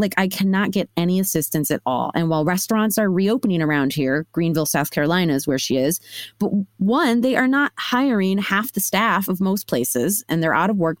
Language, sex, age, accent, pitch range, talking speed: English, female, 30-49, American, 160-215 Hz, 215 wpm